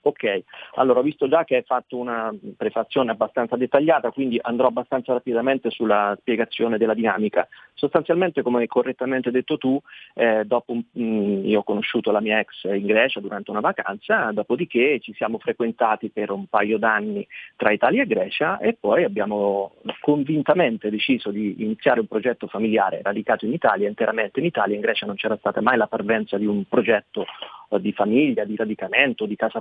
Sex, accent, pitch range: male, native, 110-140 Hz